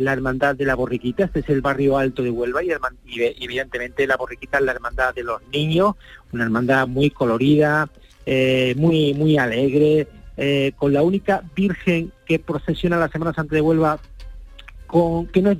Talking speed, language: 185 wpm, Spanish